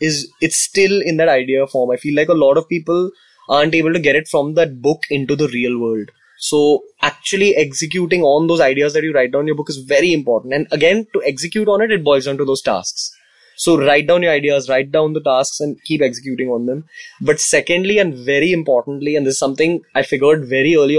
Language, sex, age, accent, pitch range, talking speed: English, male, 20-39, Indian, 140-170 Hz, 230 wpm